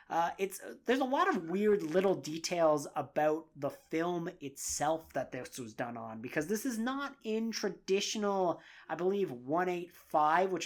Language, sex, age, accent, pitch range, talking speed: English, male, 30-49, American, 145-195 Hz, 170 wpm